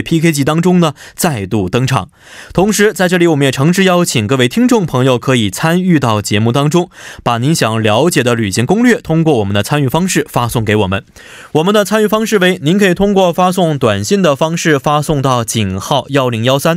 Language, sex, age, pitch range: Korean, male, 20-39, 120-185 Hz